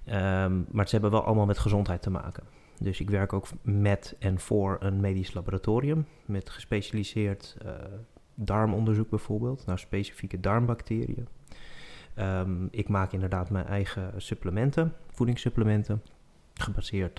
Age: 30-49